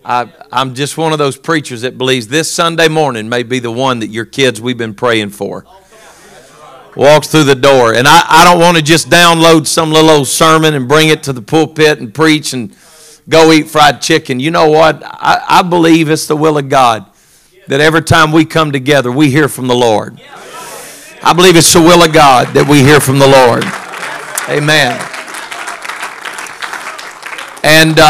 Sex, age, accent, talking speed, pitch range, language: male, 50-69, American, 190 wpm, 125-155 Hz, English